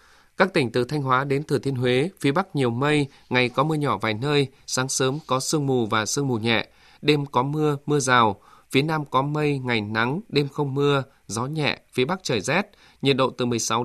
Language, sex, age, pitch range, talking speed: Vietnamese, male, 20-39, 125-150 Hz, 225 wpm